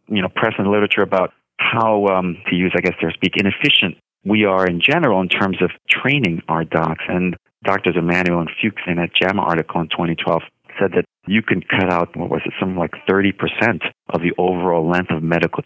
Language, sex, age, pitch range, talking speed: English, male, 40-59, 85-100 Hz, 210 wpm